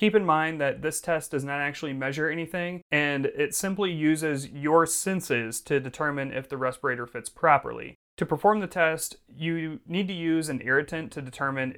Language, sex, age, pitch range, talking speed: English, male, 30-49, 130-160 Hz, 185 wpm